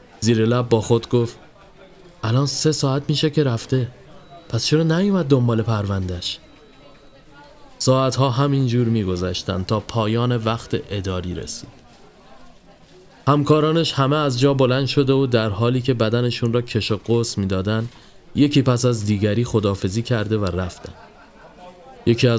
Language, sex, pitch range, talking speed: Persian, male, 105-140 Hz, 130 wpm